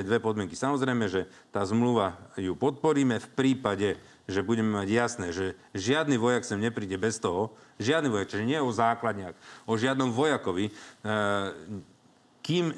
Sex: male